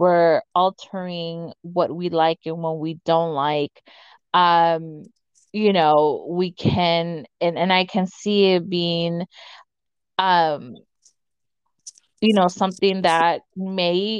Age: 20-39